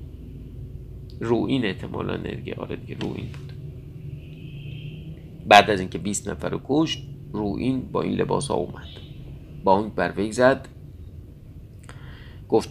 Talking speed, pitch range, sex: 115 wpm, 100-135 Hz, male